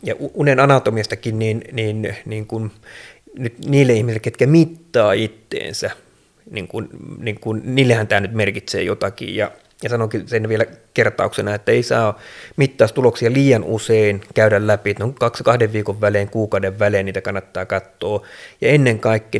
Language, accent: Finnish, native